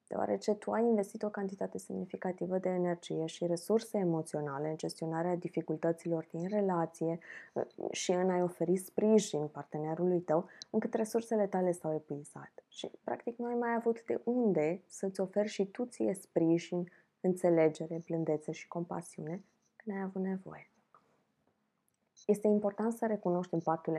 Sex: female